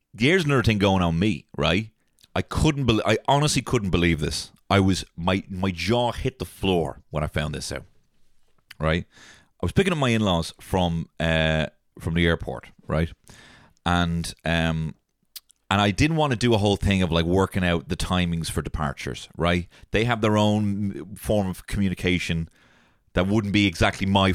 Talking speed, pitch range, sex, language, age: 180 wpm, 85-115 Hz, male, English, 30-49